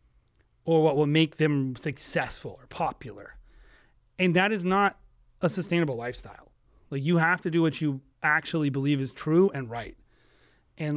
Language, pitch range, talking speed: English, 140-185 Hz, 160 wpm